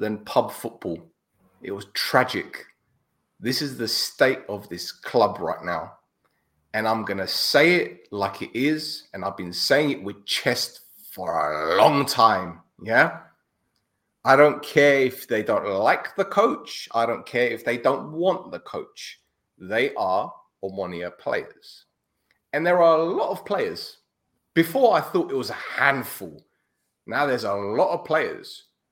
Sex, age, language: male, 30-49, English